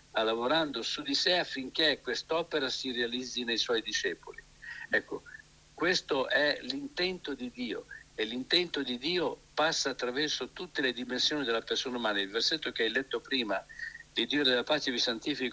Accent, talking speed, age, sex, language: native, 160 wpm, 60-79, male, Italian